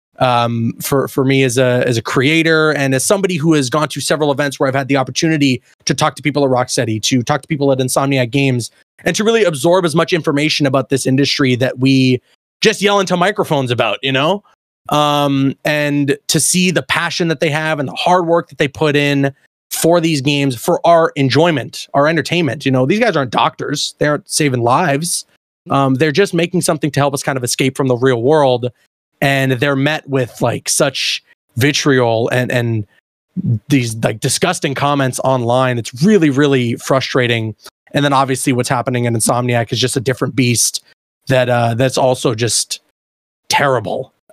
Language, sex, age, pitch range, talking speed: English, male, 20-39, 125-155 Hz, 190 wpm